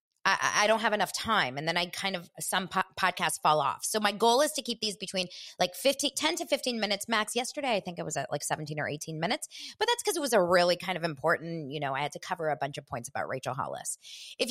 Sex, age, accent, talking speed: female, 20-39, American, 275 wpm